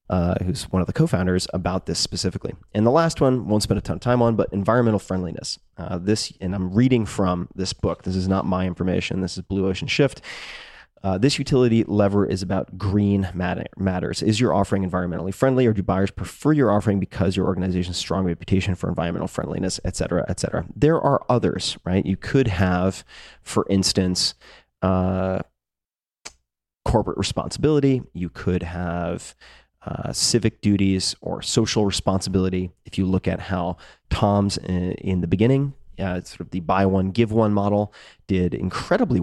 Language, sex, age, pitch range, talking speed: English, male, 30-49, 90-105 Hz, 175 wpm